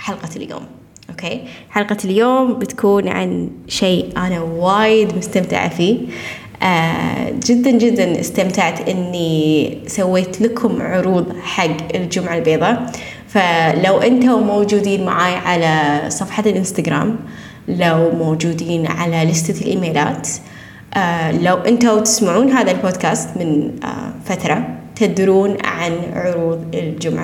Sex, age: female, 10-29